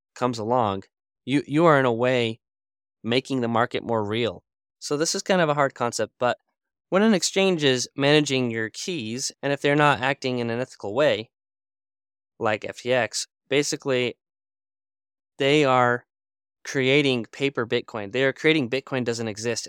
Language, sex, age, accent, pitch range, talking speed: English, male, 20-39, American, 110-140 Hz, 160 wpm